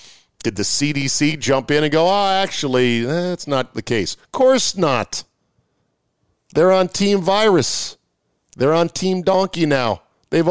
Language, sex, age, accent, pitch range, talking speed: English, male, 40-59, American, 120-165 Hz, 150 wpm